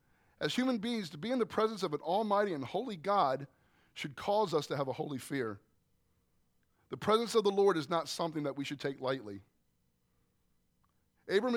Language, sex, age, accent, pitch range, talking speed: English, male, 40-59, American, 130-185 Hz, 185 wpm